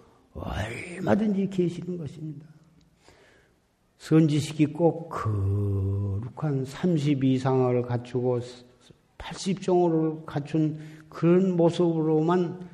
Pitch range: 130-170 Hz